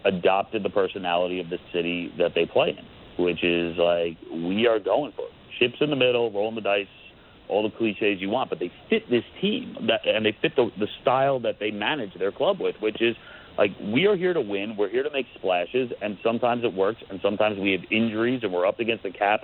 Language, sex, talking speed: English, male, 235 wpm